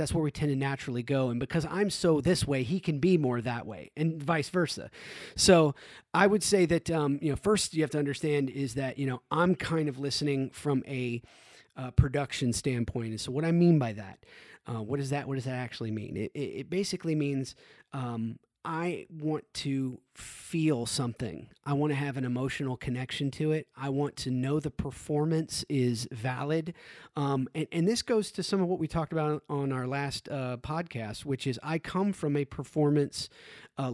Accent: American